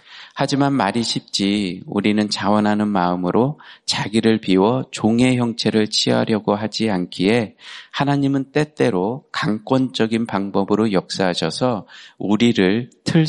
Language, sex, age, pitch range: Korean, male, 40-59, 95-115 Hz